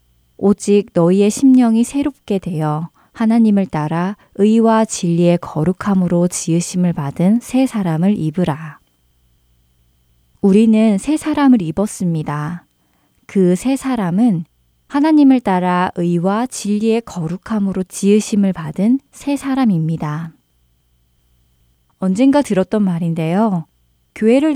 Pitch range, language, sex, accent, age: 155-220 Hz, Korean, female, native, 20-39